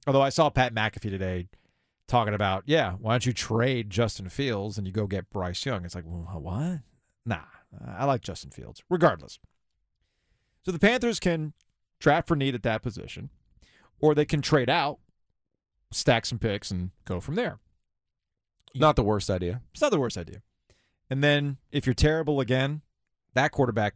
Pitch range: 100-130 Hz